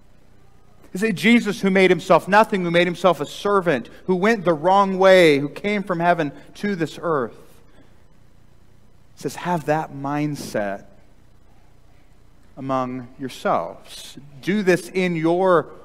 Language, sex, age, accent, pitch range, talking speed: English, male, 40-59, American, 110-175 Hz, 130 wpm